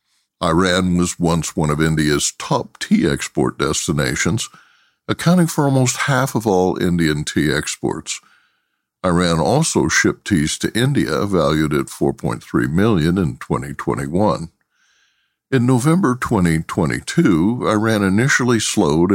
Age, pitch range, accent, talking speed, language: 60-79, 80-125 Hz, American, 115 wpm, English